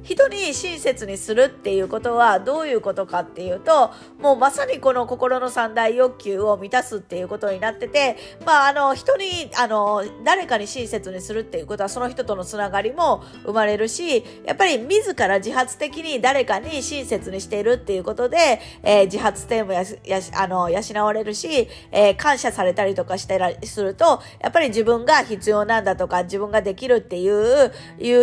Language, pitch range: Japanese, 195-275 Hz